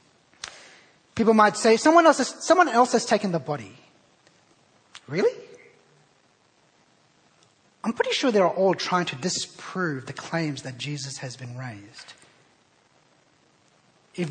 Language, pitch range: English, 130-185 Hz